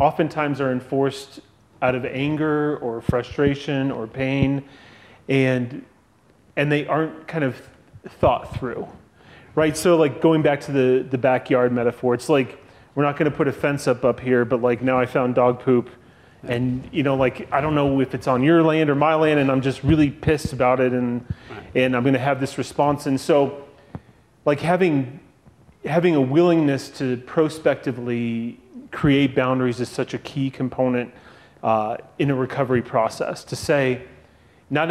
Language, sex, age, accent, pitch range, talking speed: English, male, 30-49, American, 125-140 Hz, 175 wpm